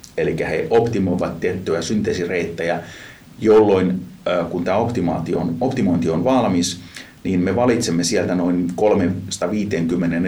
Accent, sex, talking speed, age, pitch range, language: native, male, 100 wpm, 30-49, 85-105 Hz, Finnish